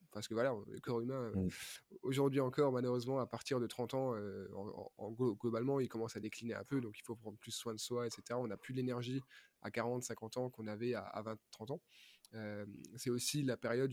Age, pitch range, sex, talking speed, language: 20-39, 115-135 Hz, male, 215 wpm, French